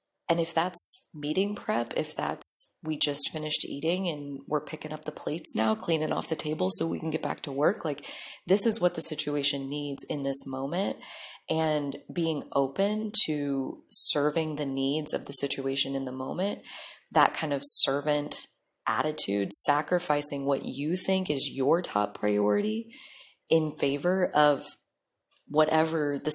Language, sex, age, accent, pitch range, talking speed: English, female, 20-39, American, 140-160 Hz, 160 wpm